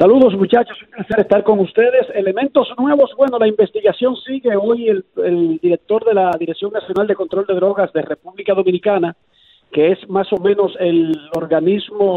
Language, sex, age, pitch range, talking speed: Spanish, male, 40-59, 180-220 Hz, 175 wpm